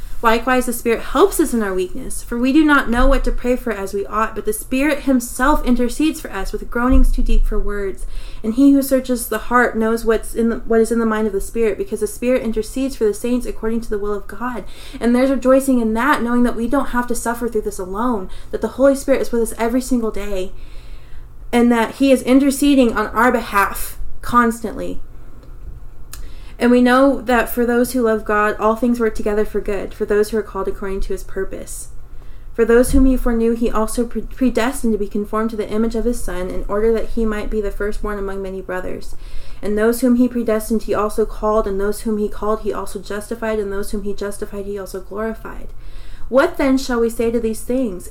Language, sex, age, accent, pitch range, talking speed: English, female, 20-39, American, 210-250 Hz, 225 wpm